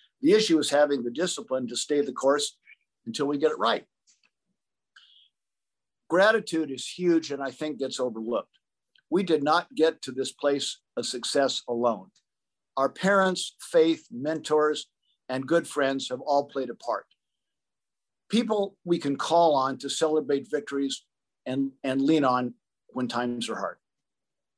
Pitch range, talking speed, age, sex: 130-155 Hz, 150 wpm, 50-69, male